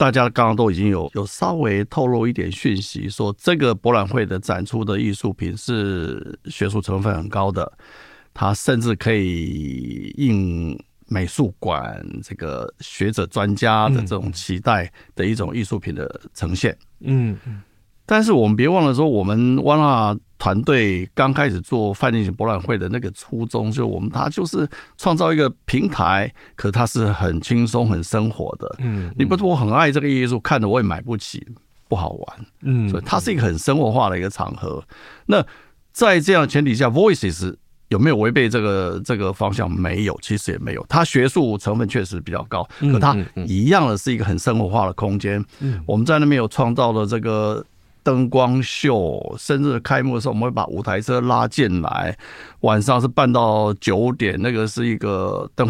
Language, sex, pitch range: Chinese, male, 100-130 Hz